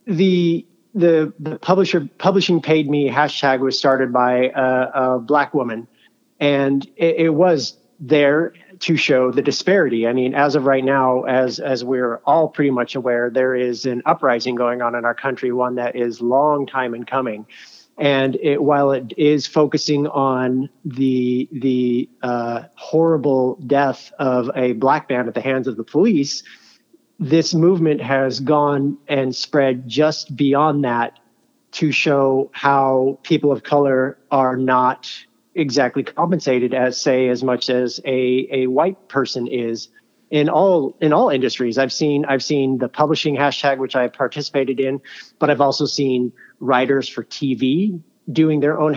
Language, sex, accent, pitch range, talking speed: English, male, American, 130-150 Hz, 160 wpm